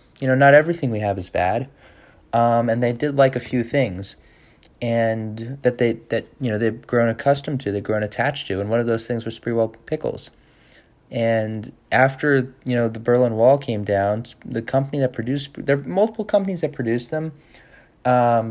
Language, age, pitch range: English, 20-39, 115-135 Hz